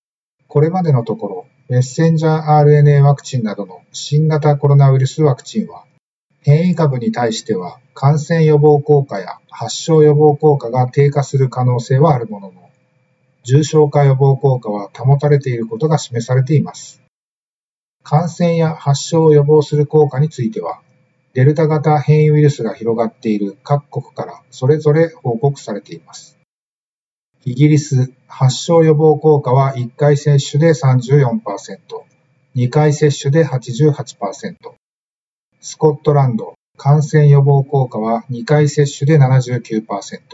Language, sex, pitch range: Japanese, male, 130-150 Hz